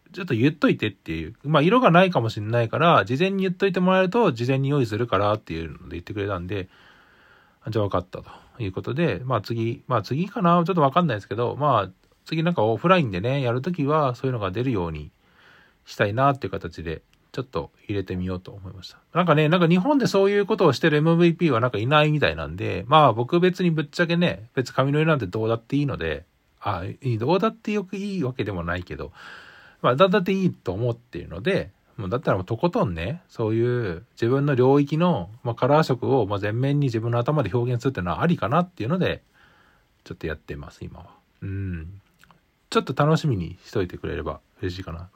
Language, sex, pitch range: Japanese, male, 95-165 Hz